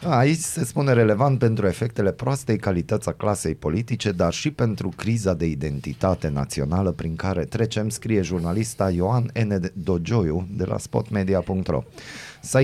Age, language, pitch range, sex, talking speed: 30-49, Romanian, 85-120 Hz, male, 140 wpm